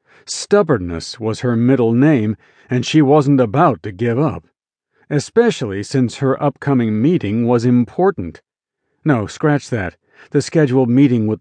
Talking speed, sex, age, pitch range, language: 135 wpm, male, 50-69, 120-155 Hz, English